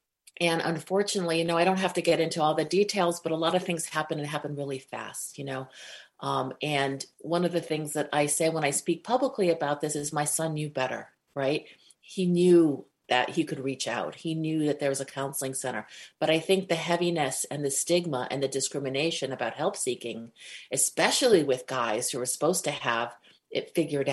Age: 40-59